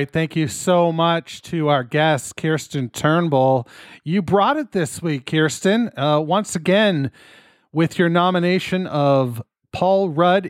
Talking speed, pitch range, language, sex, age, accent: 135 wpm, 130-175 Hz, English, male, 40-59, American